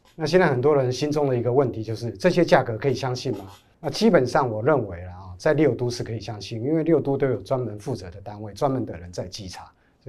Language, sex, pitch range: Chinese, male, 110-150 Hz